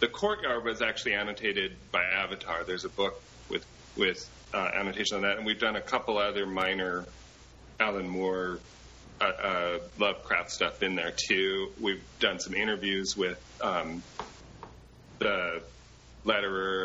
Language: English